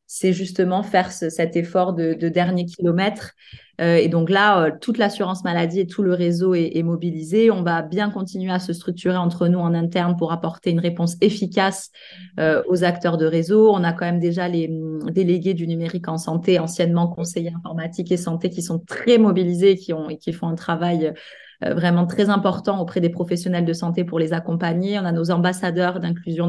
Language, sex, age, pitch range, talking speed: French, female, 20-39, 170-195 Hz, 195 wpm